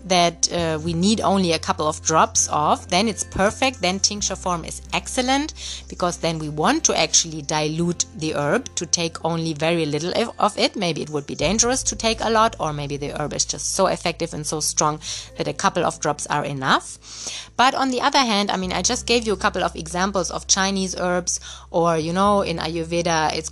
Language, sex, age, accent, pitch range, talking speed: English, female, 30-49, German, 155-200 Hz, 215 wpm